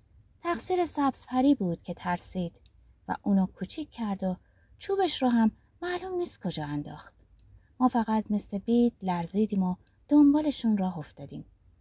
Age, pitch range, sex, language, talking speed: 30-49, 170-265 Hz, female, Persian, 130 wpm